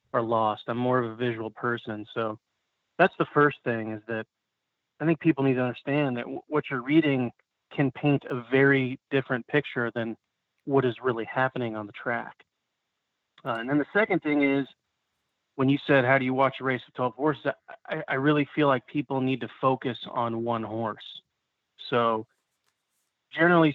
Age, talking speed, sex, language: 30-49, 185 wpm, male, English